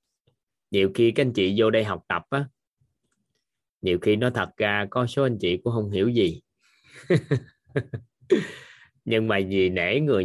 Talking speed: 165 wpm